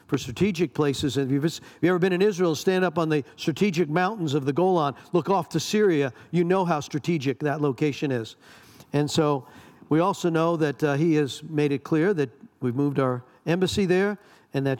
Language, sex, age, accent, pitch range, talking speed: English, male, 50-69, American, 145-185 Hz, 205 wpm